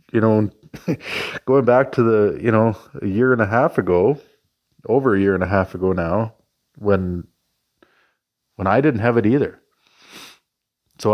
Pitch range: 95-115 Hz